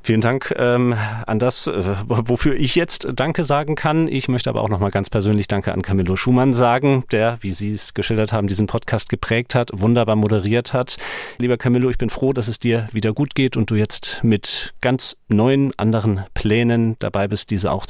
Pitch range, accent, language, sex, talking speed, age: 105-135 Hz, German, German, male, 200 wpm, 40-59